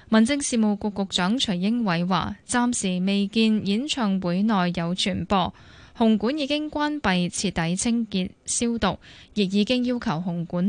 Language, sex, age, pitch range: Chinese, female, 10-29, 185-235 Hz